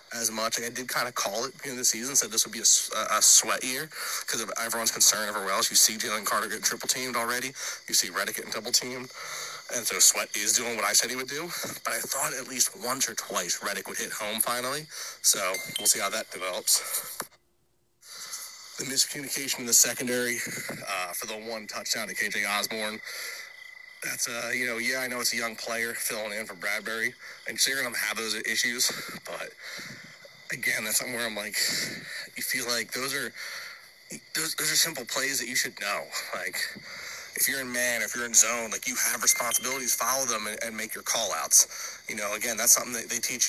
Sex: male